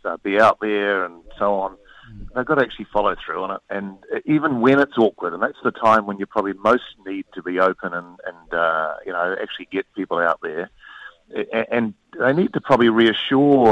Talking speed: 205 wpm